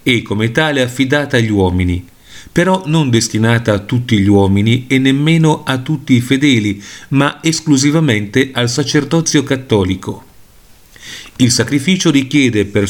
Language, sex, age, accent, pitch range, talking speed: Italian, male, 40-59, native, 110-145 Hz, 130 wpm